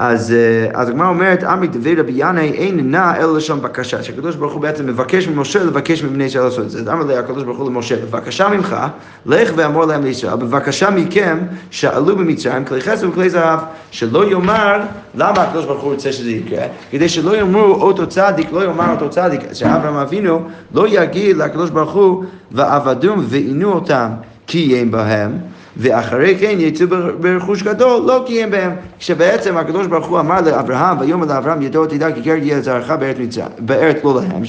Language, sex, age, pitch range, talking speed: Hebrew, male, 30-49, 135-185 Hz, 175 wpm